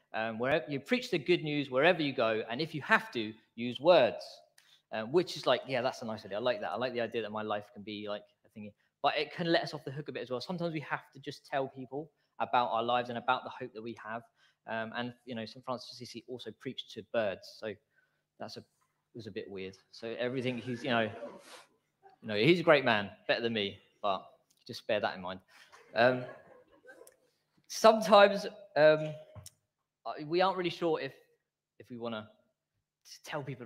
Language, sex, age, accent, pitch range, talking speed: English, male, 20-39, British, 115-165 Hz, 220 wpm